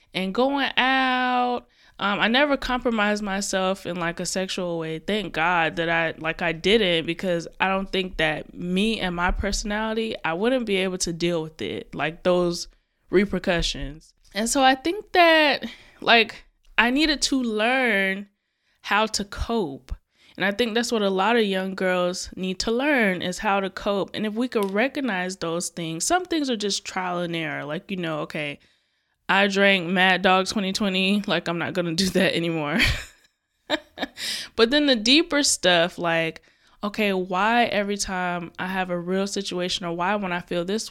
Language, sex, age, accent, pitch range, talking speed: English, female, 10-29, American, 175-215 Hz, 175 wpm